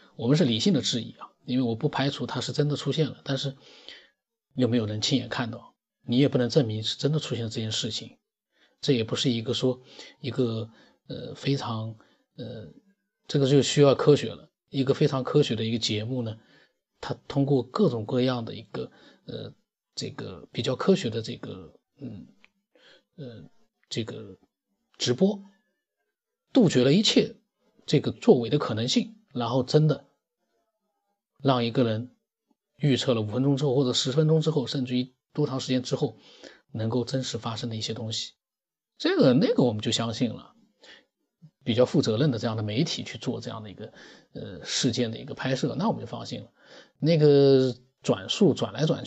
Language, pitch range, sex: Chinese, 120-155 Hz, male